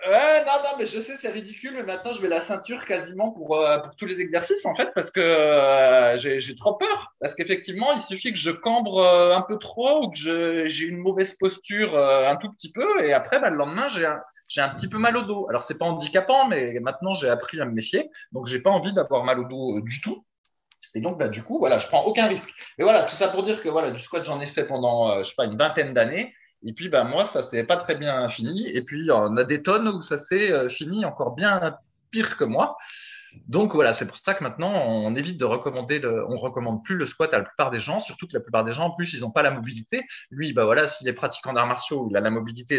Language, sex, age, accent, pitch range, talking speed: French, male, 20-39, French, 135-200 Hz, 270 wpm